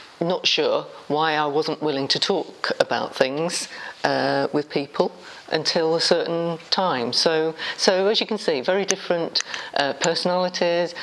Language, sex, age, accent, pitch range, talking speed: English, female, 50-69, British, 140-175 Hz, 145 wpm